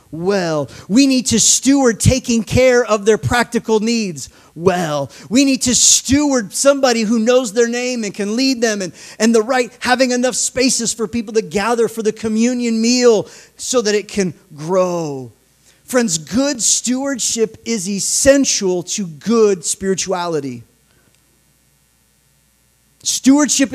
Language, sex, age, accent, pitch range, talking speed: English, male, 30-49, American, 185-245 Hz, 135 wpm